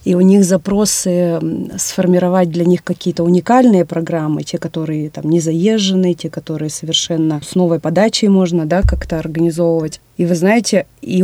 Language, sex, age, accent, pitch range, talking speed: Russian, female, 30-49, native, 165-190 Hz, 155 wpm